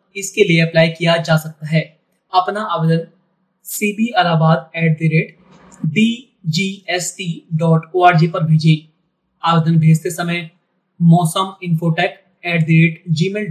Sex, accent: male, native